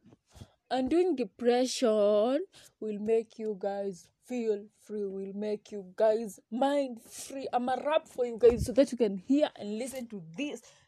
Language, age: English, 20-39